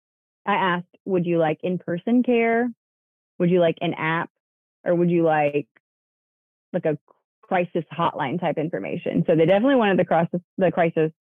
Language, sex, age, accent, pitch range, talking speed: English, female, 20-39, American, 155-185 Hz, 150 wpm